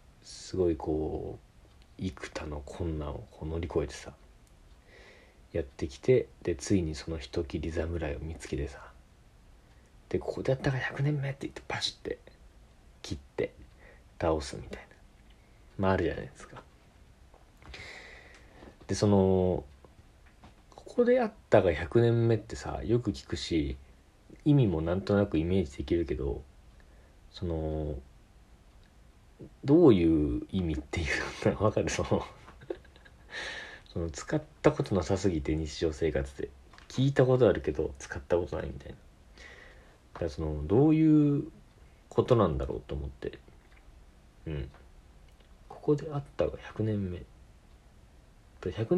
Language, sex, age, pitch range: Japanese, male, 40-59, 75-105 Hz